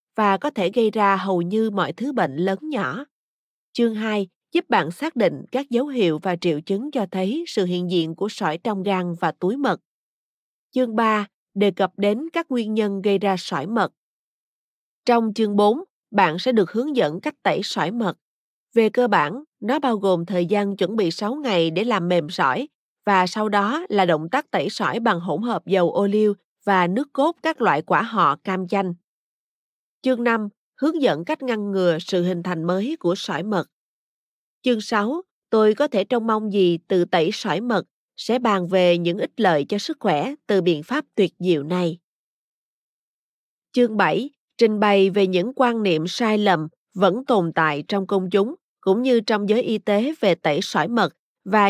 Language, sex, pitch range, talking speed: Vietnamese, female, 185-235 Hz, 195 wpm